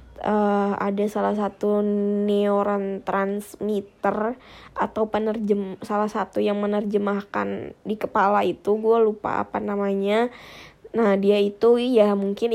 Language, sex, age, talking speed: Indonesian, female, 20-39, 115 wpm